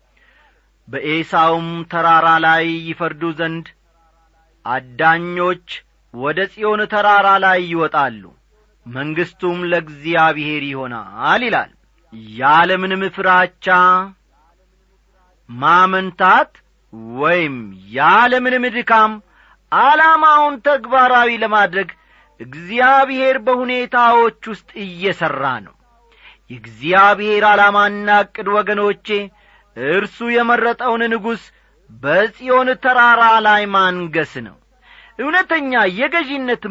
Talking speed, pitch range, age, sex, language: 70 wpm, 160-235 Hz, 40-59, male, Amharic